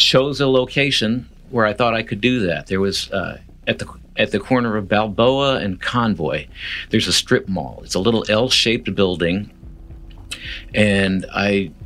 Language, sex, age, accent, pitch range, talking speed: English, male, 50-69, American, 95-120 Hz, 165 wpm